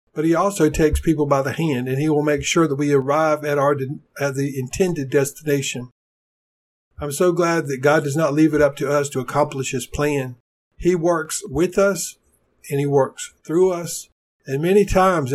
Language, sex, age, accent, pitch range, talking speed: English, male, 50-69, American, 140-165 Hz, 200 wpm